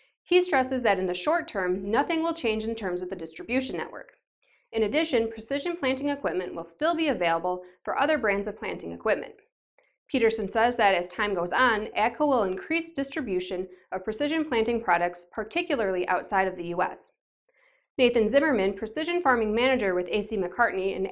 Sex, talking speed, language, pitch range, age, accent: female, 170 wpm, English, 190-285 Hz, 20-39, American